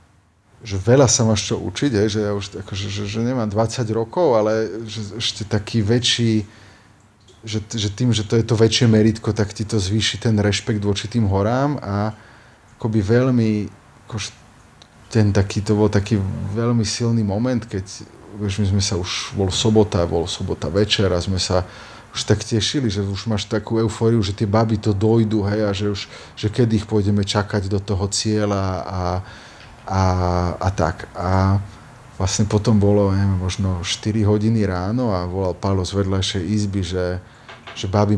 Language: Slovak